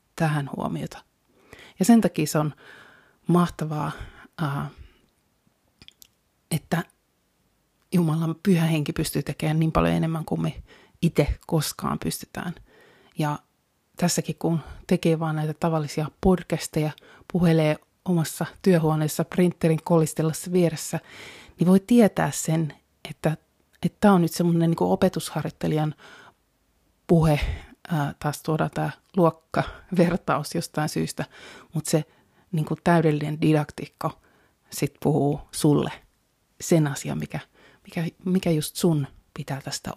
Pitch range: 150-175 Hz